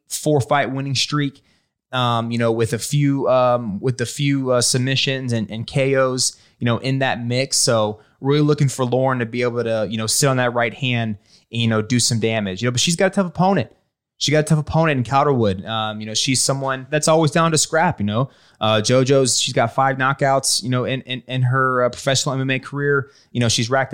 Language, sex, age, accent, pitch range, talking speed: English, male, 20-39, American, 110-135 Hz, 235 wpm